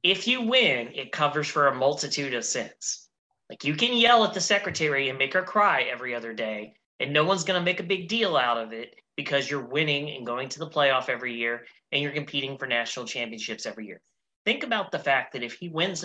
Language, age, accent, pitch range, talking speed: English, 30-49, American, 125-175 Hz, 230 wpm